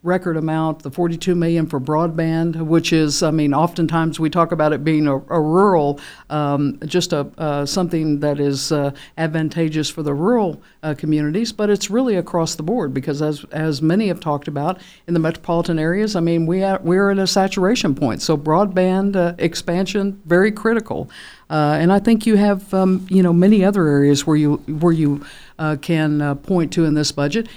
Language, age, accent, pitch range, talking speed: English, 60-79, American, 150-185 Hz, 195 wpm